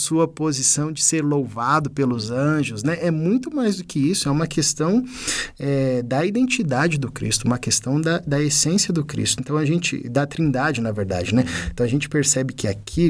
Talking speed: 190 wpm